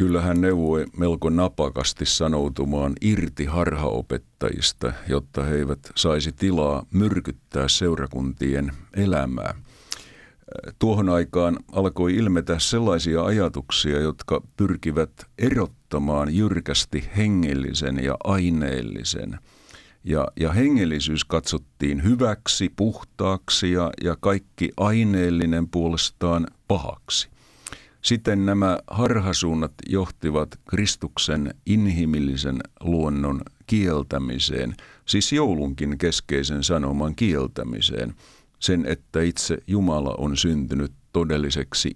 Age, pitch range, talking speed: 50-69, 75-95 Hz, 85 wpm